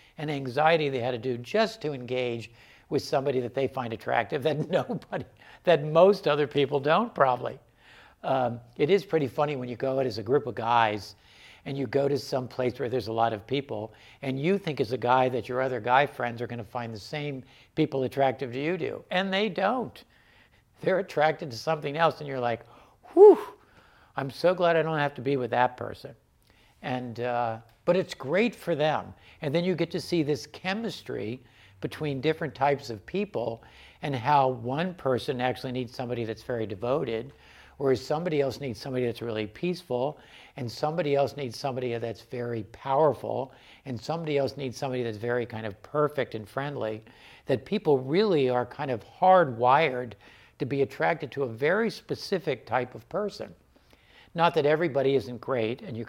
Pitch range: 120-150 Hz